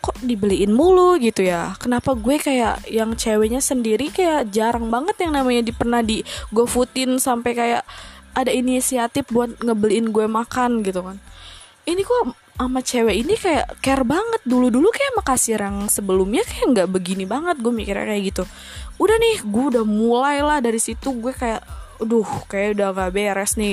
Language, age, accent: Indonesian, 20-39, native